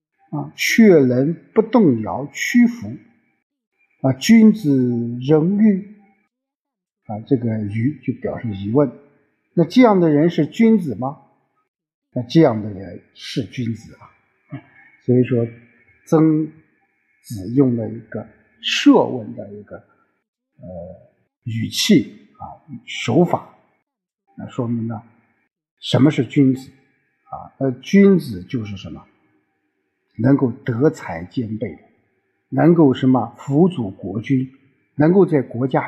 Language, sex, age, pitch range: Chinese, male, 50-69, 115-170 Hz